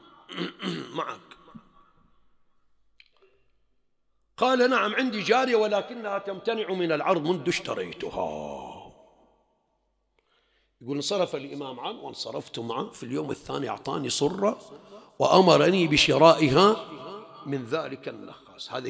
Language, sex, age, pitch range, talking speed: English, male, 50-69, 135-200 Hz, 90 wpm